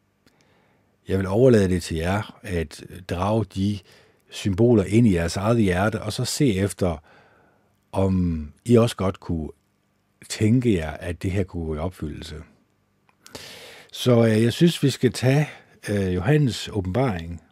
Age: 60-79